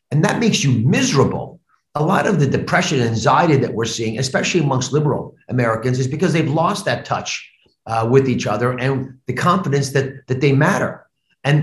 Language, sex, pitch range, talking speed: English, male, 120-170 Hz, 190 wpm